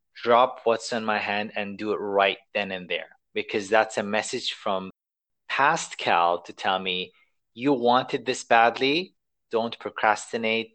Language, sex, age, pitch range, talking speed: English, male, 30-49, 100-130 Hz, 155 wpm